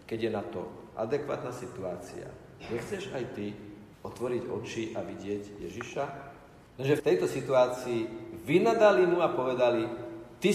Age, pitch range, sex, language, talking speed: 50-69, 115-175 Hz, male, Slovak, 130 wpm